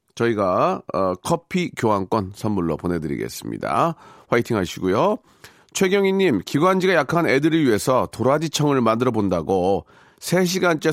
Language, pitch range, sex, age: Korean, 100-160 Hz, male, 40-59